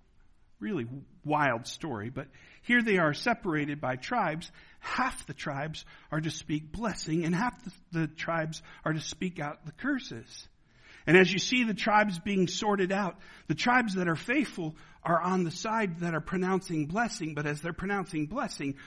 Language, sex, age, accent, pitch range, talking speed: English, male, 60-79, American, 160-225 Hz, 175 wpm